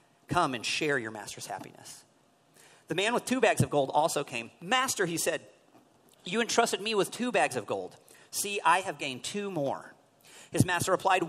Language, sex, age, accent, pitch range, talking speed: English, male, 40-59, American, 120-175 Hz, 185 wpm